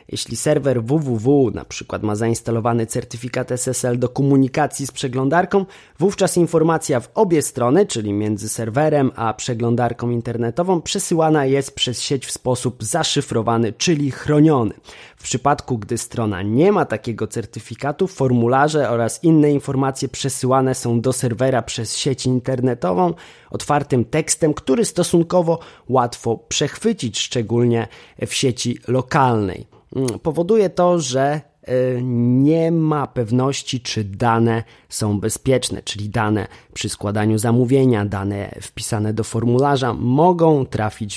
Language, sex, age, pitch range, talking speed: Polish, male, 20-39, 115-150 Hz, 120 wpm